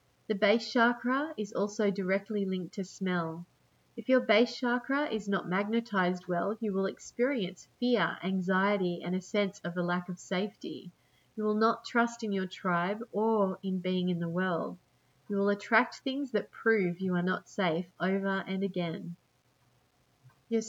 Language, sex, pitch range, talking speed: English, female, 180-220 Hz, 165 wpm